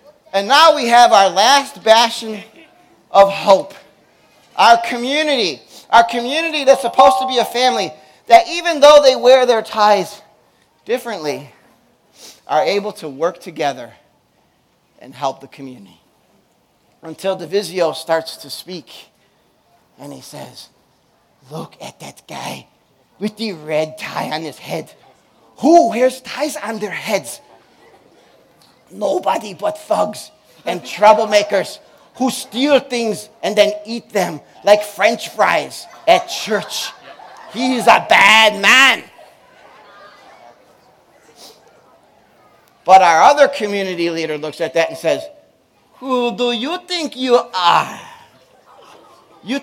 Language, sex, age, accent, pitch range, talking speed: English, male, 30-49, American, 200-280 Hz, 120 wpm